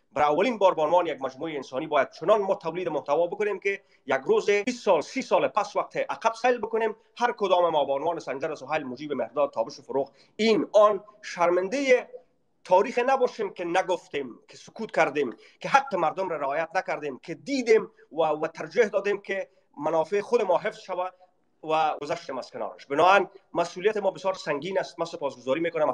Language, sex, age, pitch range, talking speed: Persian, male, 30-49, 150-200 Hz, 175 wpm